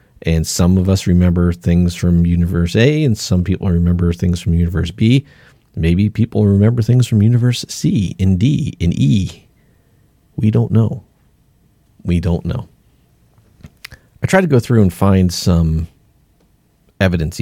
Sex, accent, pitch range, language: male, American, 85-110 Hz, English